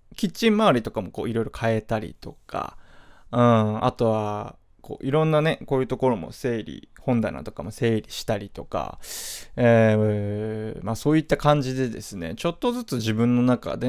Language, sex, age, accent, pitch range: Japanese, male, 20-39, native, 110-155 Hz